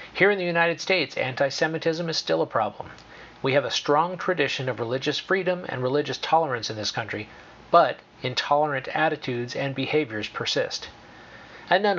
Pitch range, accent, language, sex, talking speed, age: 130-160 Hz, American, English, male, 165 wpm, 40-59